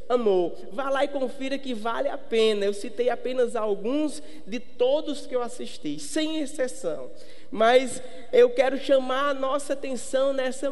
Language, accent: Portuguese, Brazilian